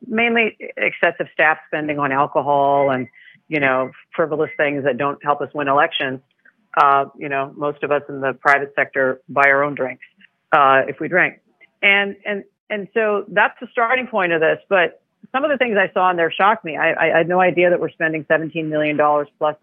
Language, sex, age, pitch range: English, female, 40-59, 145-180 Hz